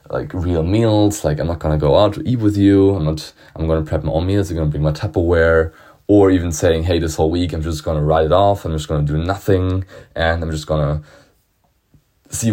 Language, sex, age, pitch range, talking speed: English, male, 20-39, 80-95 Hz, 265 wpm